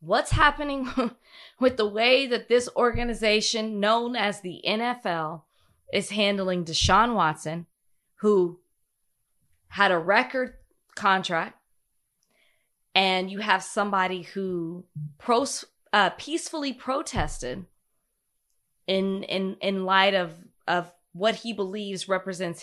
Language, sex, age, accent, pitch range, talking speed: English, female, 20-39, American, 175-235 Hz, 105 wpm